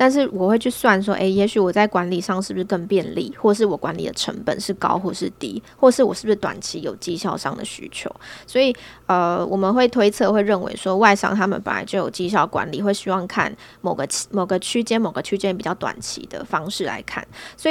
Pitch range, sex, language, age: 185-215 Hz, female, Chinese, 20-39